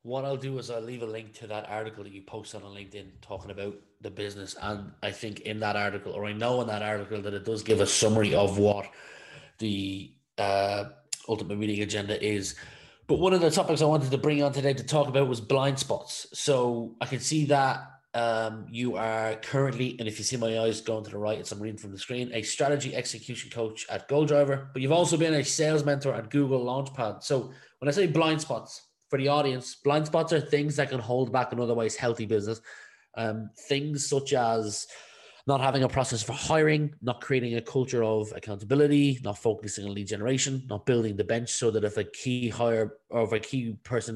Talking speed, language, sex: 220 wpm, English, male